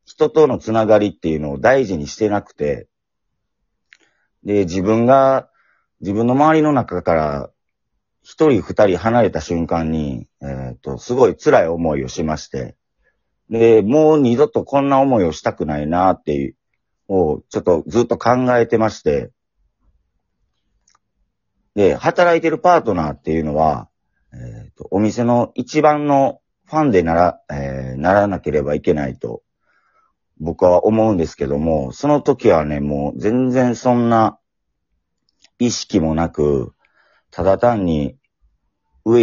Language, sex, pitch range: Japanese, male, 80-120 Hz